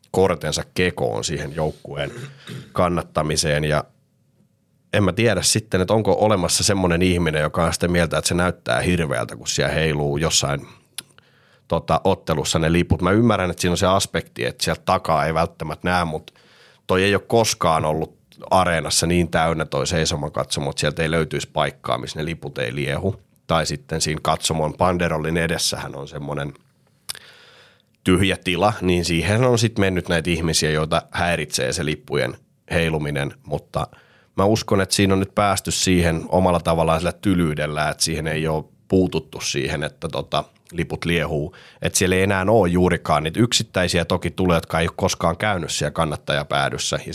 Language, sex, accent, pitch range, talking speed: Finnish, male, native, 80-95 Hz, 165 wpm